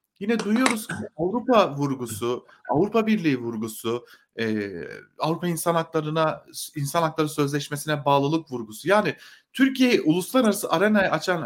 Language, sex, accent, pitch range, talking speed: German, male, Turkish, 135-190 Hz, 110 wpm